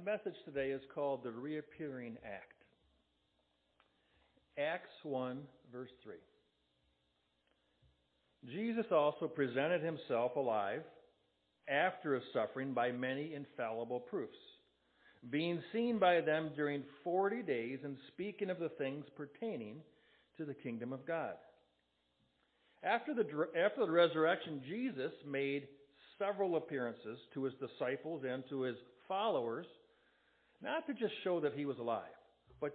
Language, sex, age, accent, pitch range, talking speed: English, male, 50-69, American, 130-170 Hz, 120 wpm